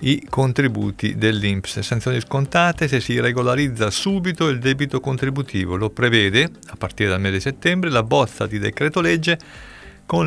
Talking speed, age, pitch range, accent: 150 wpm, 40-59, 105-140 Hz, native